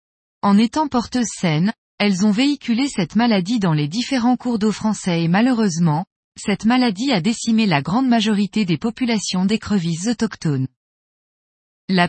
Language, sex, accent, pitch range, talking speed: French, female, French, 185-245 Hz, 145 wpm